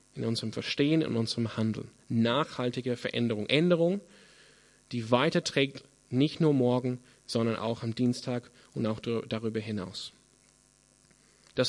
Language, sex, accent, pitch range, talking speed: German, male, German, 115-150 Hz, 120 wpm